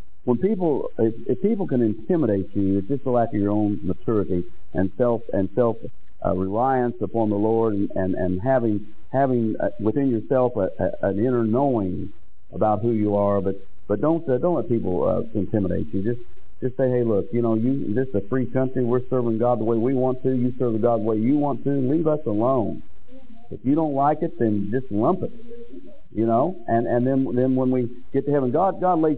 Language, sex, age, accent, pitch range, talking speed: English, male, 50-69, American, 100-130 Hz, 215 wpm